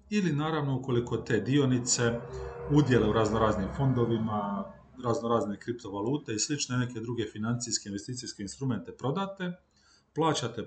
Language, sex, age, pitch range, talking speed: Croatian, male, 40-59, 110-145 Hz, 110 wpm